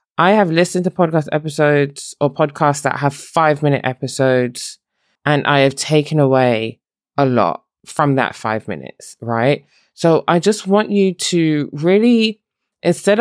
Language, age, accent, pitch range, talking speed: English, 20-39, British, 140-185 Hz, 150 wpm